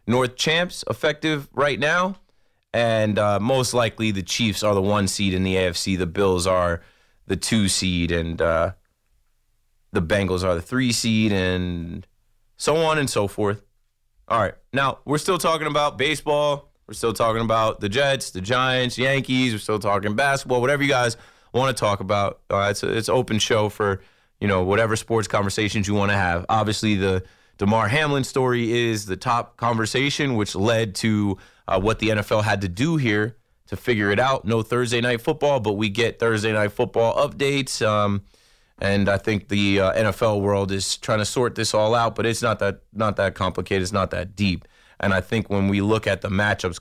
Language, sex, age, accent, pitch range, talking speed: English, male, 20-39, American, 95-115 Hz, 195 wpm